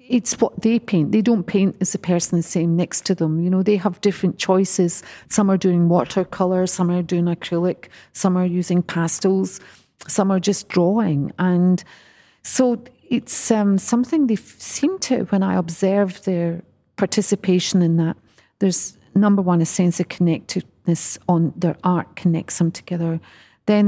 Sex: female